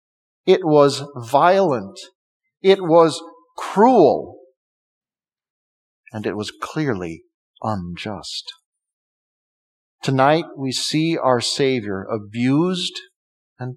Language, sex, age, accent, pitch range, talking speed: English, male, 50-69, American, 125-175 Hz, 80 wpm